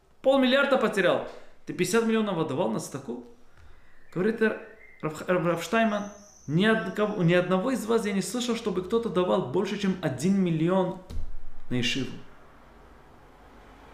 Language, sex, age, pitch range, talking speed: Russian, male, 20-39, 145-210 Hz, 125 wpm